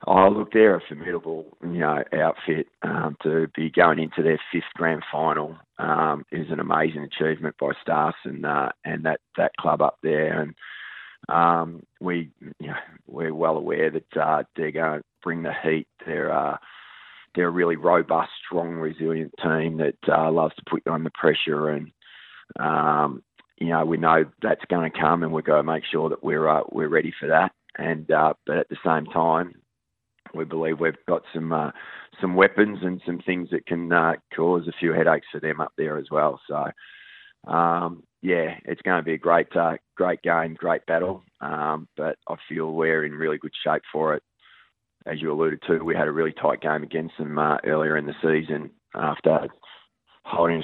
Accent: Australian